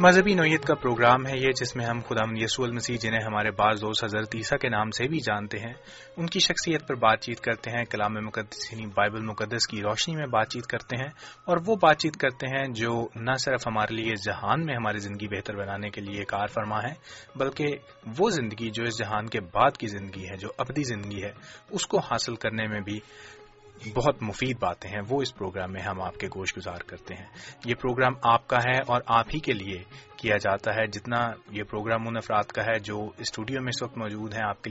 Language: English